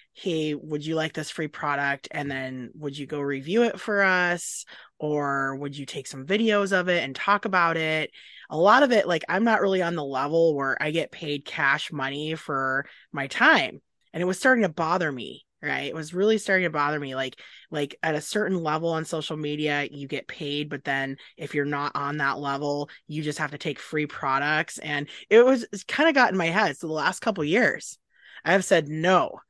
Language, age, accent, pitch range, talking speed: English, 20-39, American, 150-230 Hz, 220 wpm